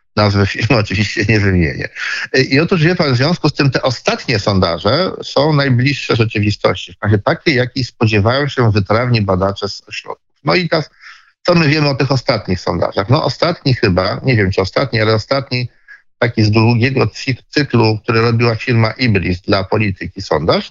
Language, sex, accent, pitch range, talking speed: Polish, male, native, 100-135 Hz, 175 wpm